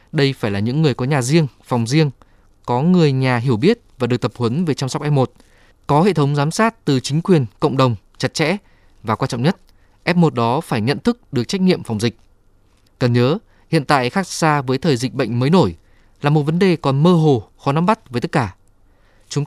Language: Vietnamese